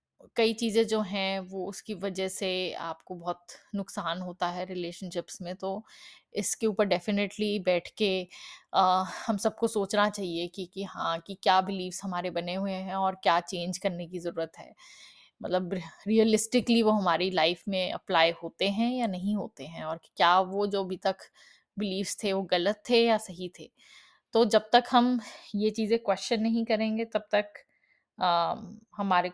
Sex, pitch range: female, 185-220 Hz